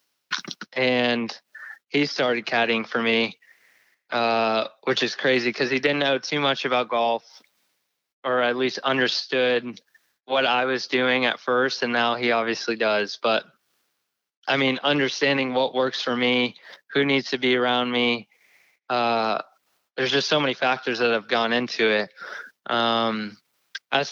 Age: 20-39